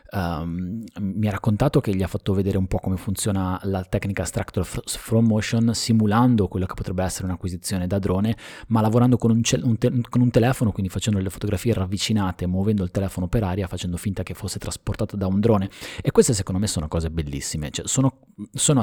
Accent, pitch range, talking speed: native, 90-110 Hz, 185 wpm